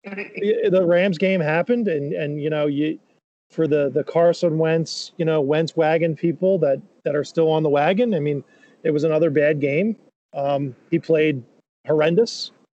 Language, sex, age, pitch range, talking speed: English, male, 40-59, 155-185 Hz, 175 wpm